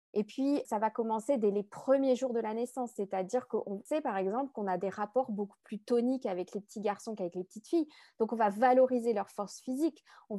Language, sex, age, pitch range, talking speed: French, female, 20-39, 200-255 Hz, 230 wpm